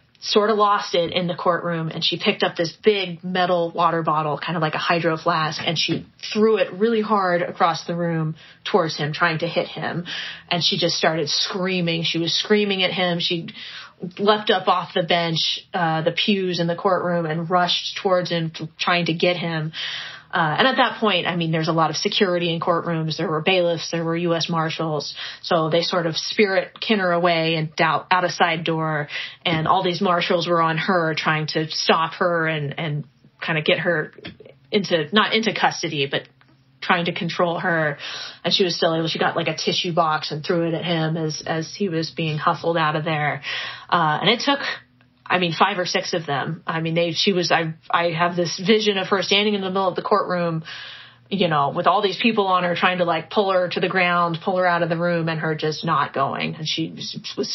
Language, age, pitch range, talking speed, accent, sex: English, 30-49, 160-185 Hz, 220 wpm, American, female